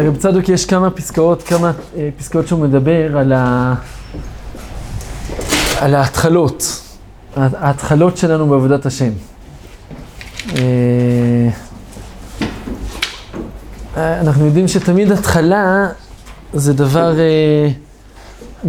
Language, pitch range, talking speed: Hebrew, 130-180 Hz, 85 wpm